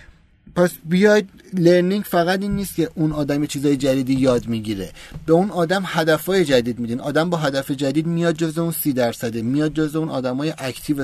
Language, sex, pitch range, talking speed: Persian, male, 130-165 Hz, 190 wpm